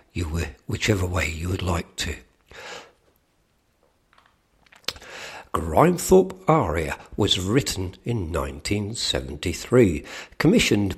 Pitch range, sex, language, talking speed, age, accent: 80-120 Hz, male, English, 80 wpm, 60-79, British